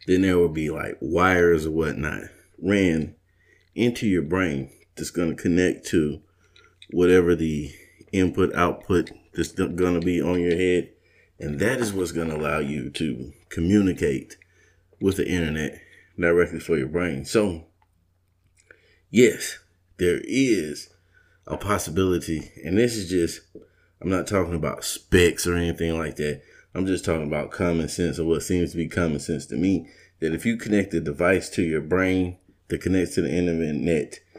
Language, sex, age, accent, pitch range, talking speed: English, male, 30-49, American, 80-90 Hz, 160 wpm